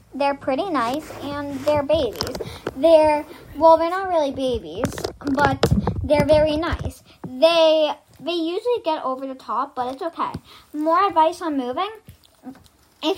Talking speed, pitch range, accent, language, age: 140 wpm, 255-320 Hz, American, English, 10-29